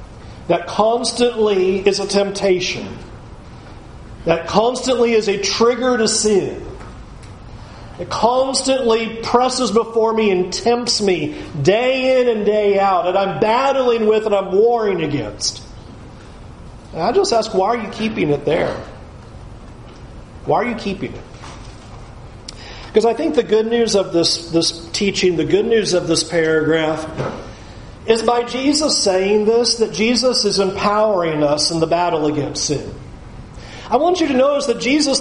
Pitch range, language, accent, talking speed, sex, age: 170-230 Hz, English, American, 145 wpm, male, 40-59